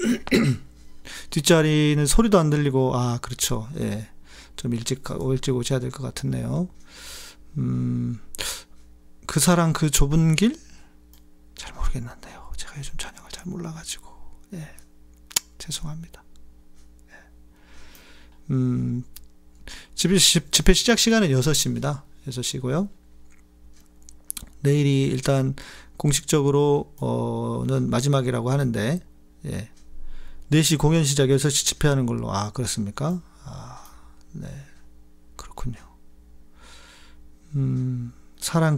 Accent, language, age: native, Korean, 40-59